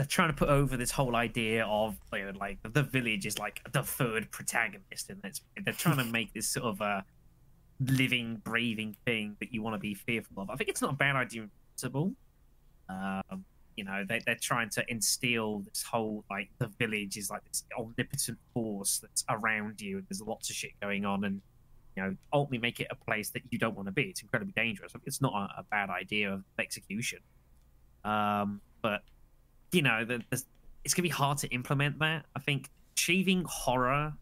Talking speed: 210 wpm